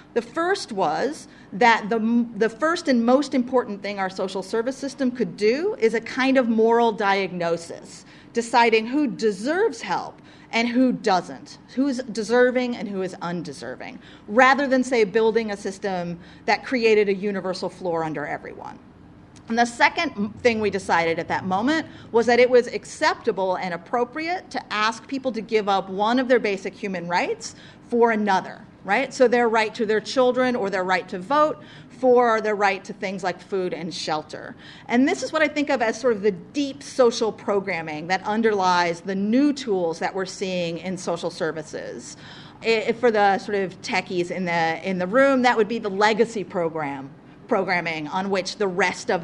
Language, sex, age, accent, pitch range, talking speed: English, female, 40-59, American, 185-245 Hz, 180 wpm